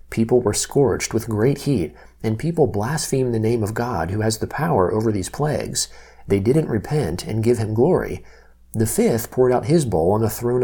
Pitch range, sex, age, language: 100-125 Hz, male, 40-59, English